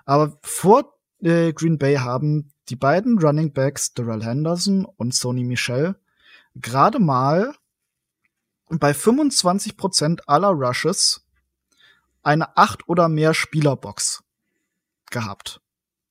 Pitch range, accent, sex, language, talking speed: 130-170 Hz, German, male, German, 105 wpm